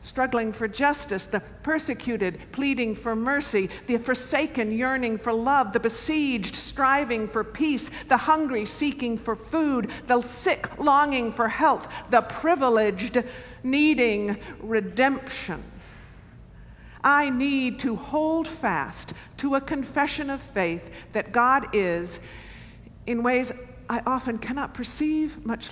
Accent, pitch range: American, 205-260 Hz